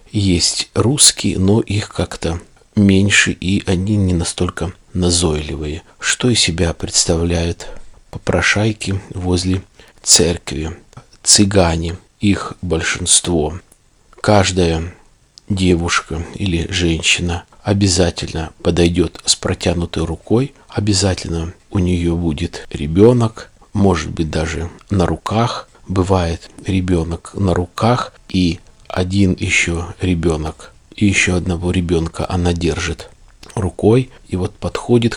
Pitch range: 85-100 Hz